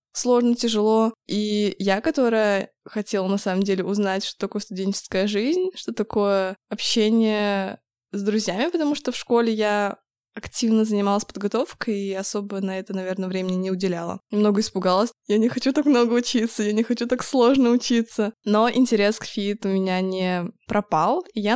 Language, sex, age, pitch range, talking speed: Russian, female, 20-39, 200-230 Hz, 165 wpm